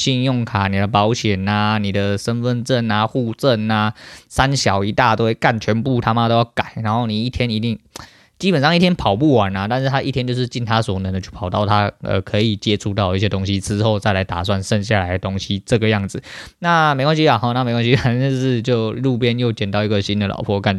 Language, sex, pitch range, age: Chinese, male, 100-125 Hz, 20-39